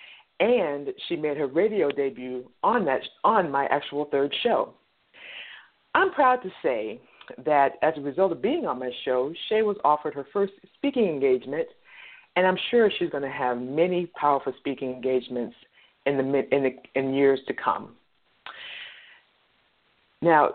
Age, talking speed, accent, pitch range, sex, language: 50-69, 155 wpm, American, 135-230 Hz, female, English